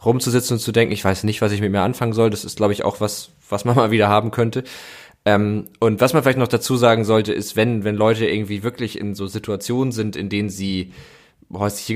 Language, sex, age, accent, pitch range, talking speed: German, male, 20-39, German, 105-120 Hz, 240 wpm